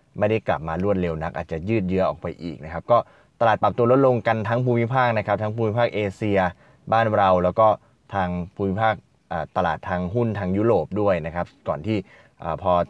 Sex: male